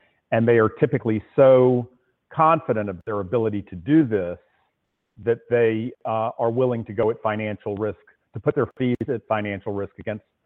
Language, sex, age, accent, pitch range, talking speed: English, male, 50-69, American, 105-125 Hz, 170 wpm